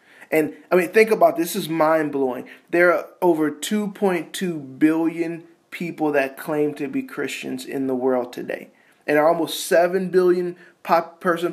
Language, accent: English, American